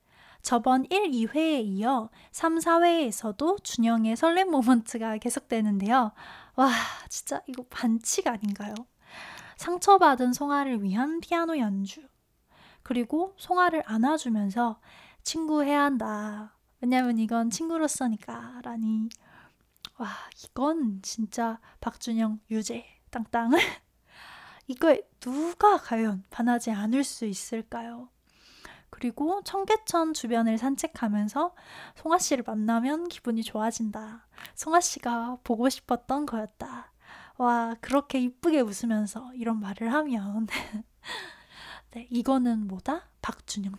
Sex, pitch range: female, 225-295 Hz